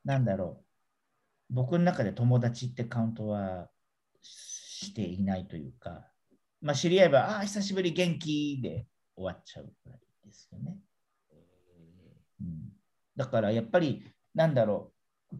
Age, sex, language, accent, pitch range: 50-69, male, Japanese, native, 110-175 Hz